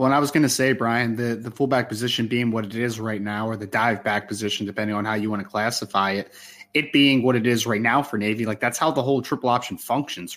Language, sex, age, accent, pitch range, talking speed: English, male, 20-39, American, 110-130 Hz, 280 wpm